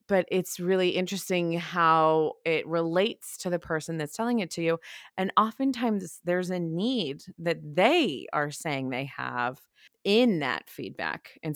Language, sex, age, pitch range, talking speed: English, female, 20-39, 140-175 Hz, 155 wpm